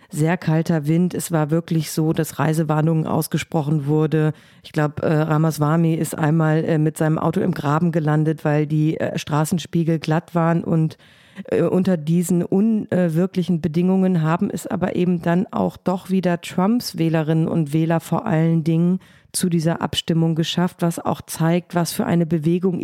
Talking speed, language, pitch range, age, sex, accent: 150 wpm, German, 160-180 Hz, 50-69, female, German